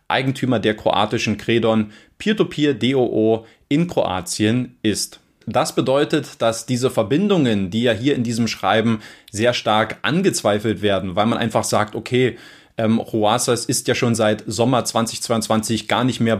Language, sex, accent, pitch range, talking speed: German, male, German, 105-120 Hz, 145 wpm